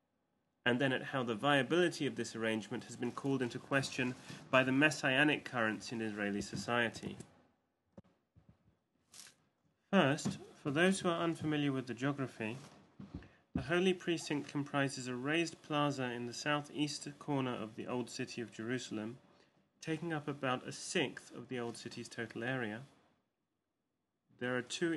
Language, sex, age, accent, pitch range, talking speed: English, male, 30-49, British, 115-145 Hz, 145 wpm